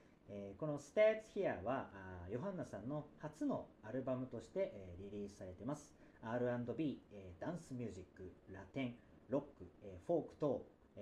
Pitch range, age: 95-150 Hz, 40-59